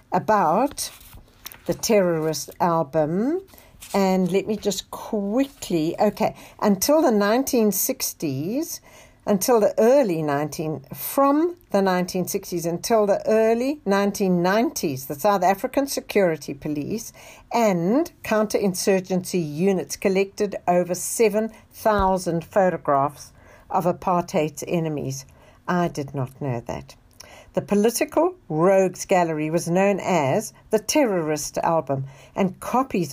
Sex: female